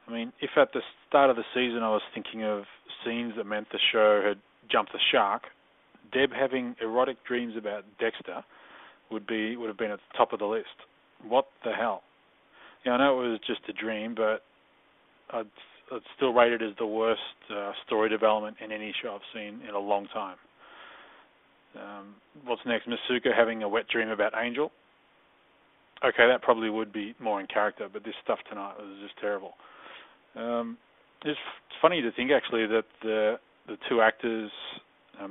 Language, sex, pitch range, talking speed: English, male, 105-120 Hz, 180 wpm